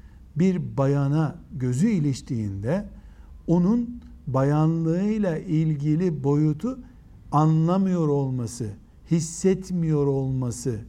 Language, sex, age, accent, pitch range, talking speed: Turkish, male, 60-79, native, 130-190 Hz, 65 wpm